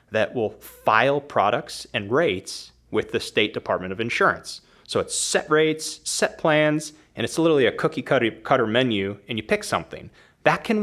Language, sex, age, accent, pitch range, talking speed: English, male, 30-49, American, 110-160 Hz, 170 wpm